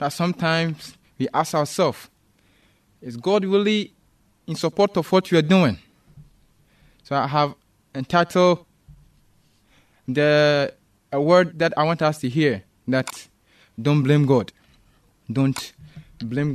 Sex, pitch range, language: male, 145-205 Hz, English